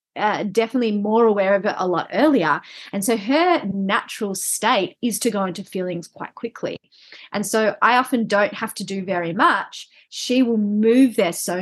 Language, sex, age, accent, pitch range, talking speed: English, female, 30-49, Australian, 195-245 Hz, 185 wpm